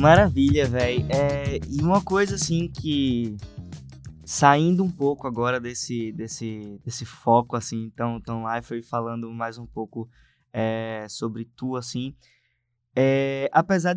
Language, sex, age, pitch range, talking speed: Portuguese, male, 20-39, 115-135 Hz, 135 wpm